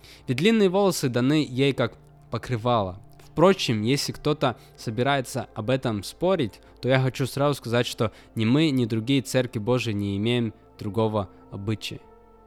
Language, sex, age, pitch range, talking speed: Russian, male, 20-39, 115-145 Hz, 145 wpm